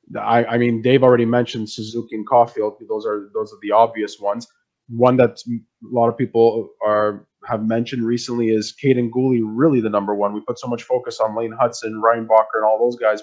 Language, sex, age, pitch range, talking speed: English, male, 20-39, 105-125 Hz, 205 wpm